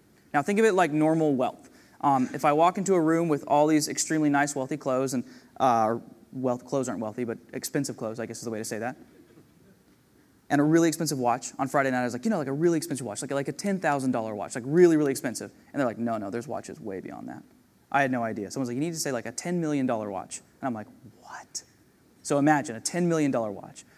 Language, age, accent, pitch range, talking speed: English, 20-39, American, 135-185 Hz, 250 wpm